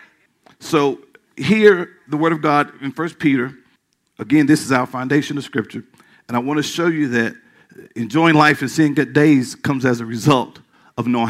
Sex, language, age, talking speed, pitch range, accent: male, English, 50-69, 185 wpm, 110-150 Hz, American